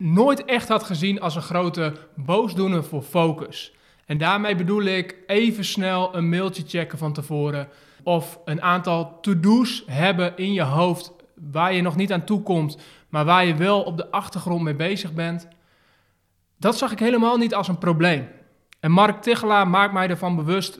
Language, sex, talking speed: Dutch, male, 175 wpm